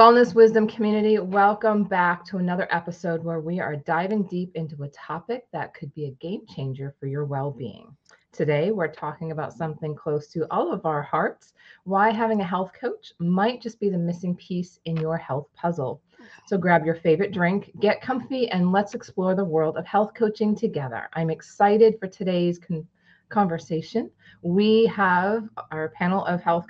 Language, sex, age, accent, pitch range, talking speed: English, female, 30-49, American, 150-200 Hz, 175 wpm